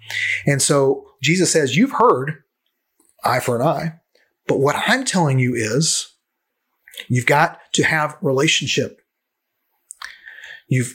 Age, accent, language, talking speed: 30-49, American, English, 120 wpm